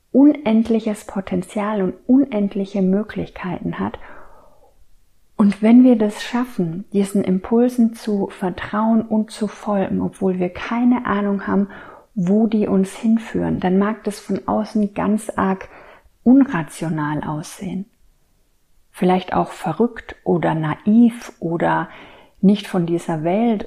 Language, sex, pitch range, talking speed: German, female, 185-215 Hz, 115 wpm